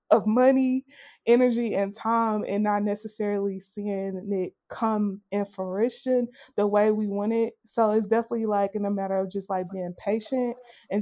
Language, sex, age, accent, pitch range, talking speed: English, female, 20-39, American, 195-230 Hz, 170 wpm